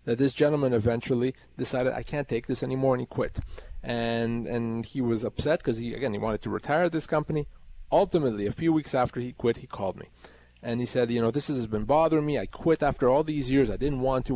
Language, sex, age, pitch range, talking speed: English, male, 30-49, 125-165 Hz, 240 wpm